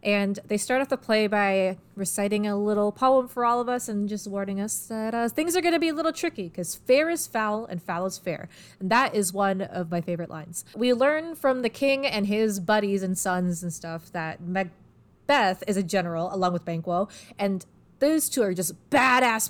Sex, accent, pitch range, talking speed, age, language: female, American, 180-235 Hz, 220 wpm, 20-39, English